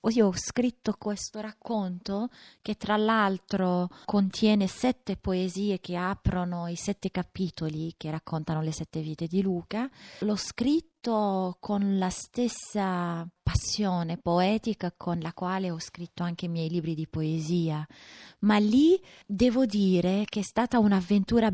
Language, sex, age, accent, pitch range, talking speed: Italian, female, 30-49, native, 175-215 Hz, 135 wpm